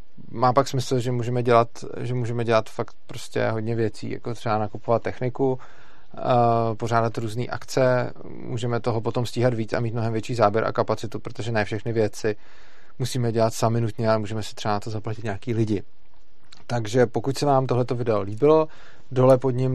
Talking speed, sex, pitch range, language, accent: 180 wpm, male, 105-125 Hz, Czech, native